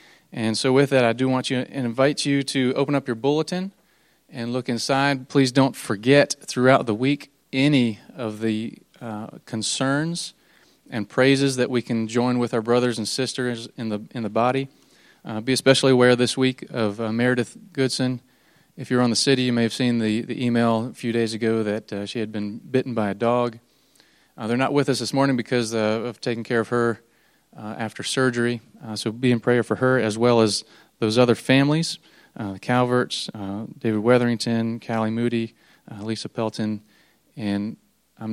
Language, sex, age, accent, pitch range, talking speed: English, male, 30-49, American, 110-130 Hz, 195 wpm